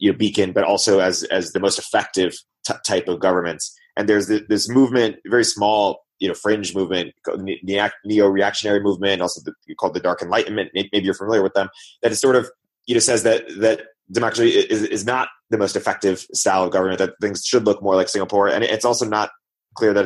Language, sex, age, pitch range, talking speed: English, male, 20-39, 100-115 Hz, 210 wpm